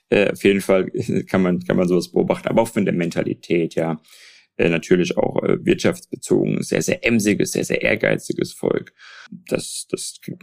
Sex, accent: male, German